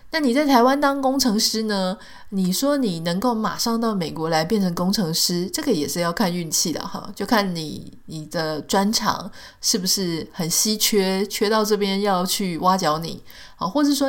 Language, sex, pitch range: Chinese, female, 170-225 Hz